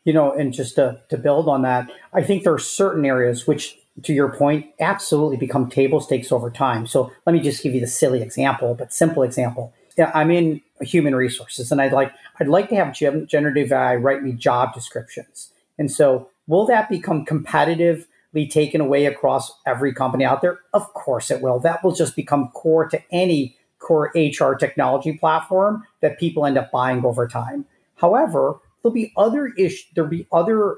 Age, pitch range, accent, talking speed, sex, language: 40-59, 140-175 Hz, American, 190 wpm, male, English